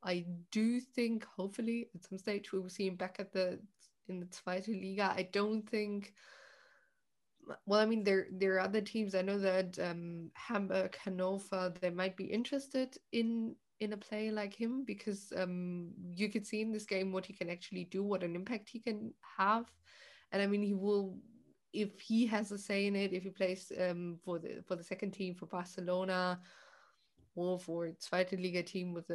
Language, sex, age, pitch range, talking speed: English, female, 20-39, 180-205 Hz, 195 wpm